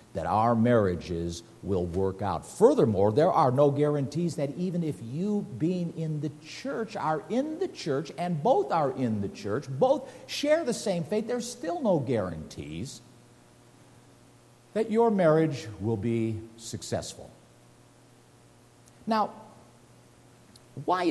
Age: 60-79